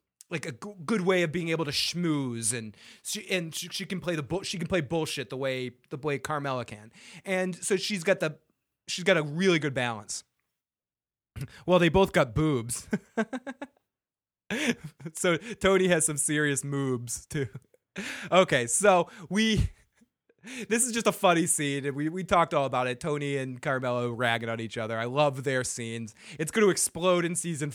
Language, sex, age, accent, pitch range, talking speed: English, male, 20-39, American, 145-200 Hz, 180 wpm